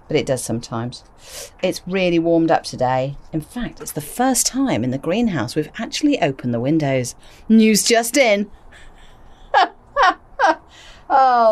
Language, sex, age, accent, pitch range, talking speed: English, female, 40-59, British, 145-215 Hz, 140 wpm